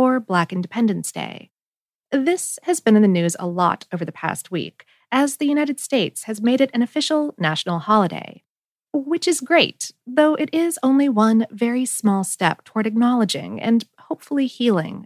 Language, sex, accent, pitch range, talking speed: English, female, American, 190-270 Hz, 165 wpm